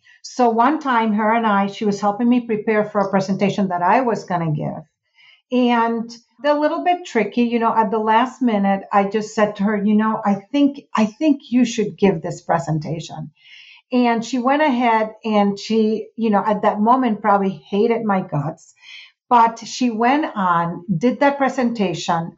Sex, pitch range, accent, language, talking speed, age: female, 200-245 Hz, American, English, 185 wpm, 50-69